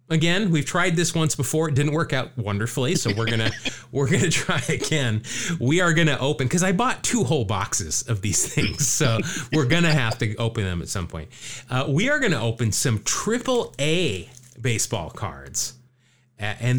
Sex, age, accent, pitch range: male, 30-49, American, 115-150 Hz